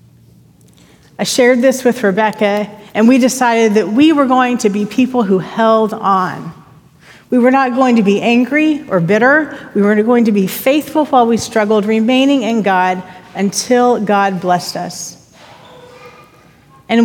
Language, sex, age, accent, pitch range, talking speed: English, female, 40-59, American, 200-255 Hz, 155 wpm